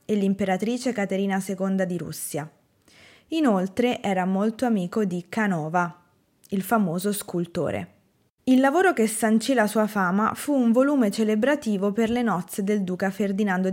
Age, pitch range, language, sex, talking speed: 20-39, 185-235 Hz, Italian, female, 140 wpm